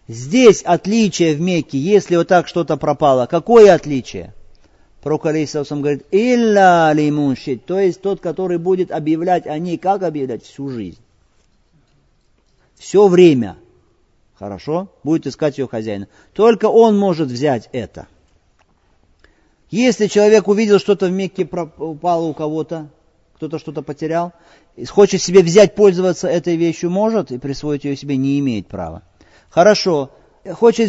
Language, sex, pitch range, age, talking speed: Russian, male, 115-185 Hz, 40-59, 130 wpm